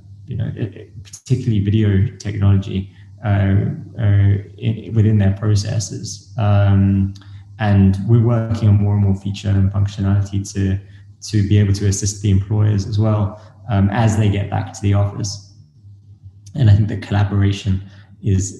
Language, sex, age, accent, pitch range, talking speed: English, male, 20-39, British, 100-110 Hz, 150 wpm